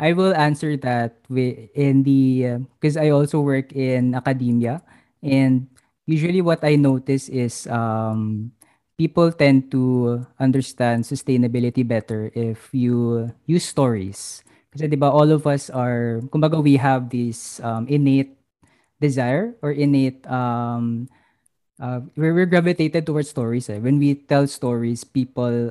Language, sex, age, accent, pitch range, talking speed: English, female, 20-39, Filipino, 120-140 Hz, 135 wpm